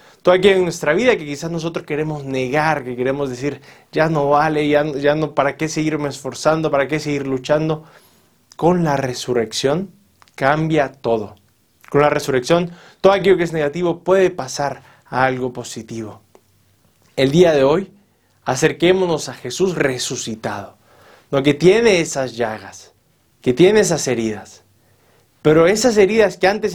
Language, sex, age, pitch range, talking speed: Spanish, male, 30-49, 125-175 Hz, 155 wpm